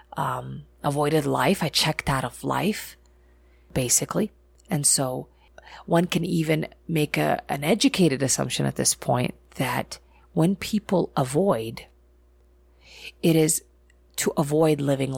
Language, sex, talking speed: English, female, 125 wpm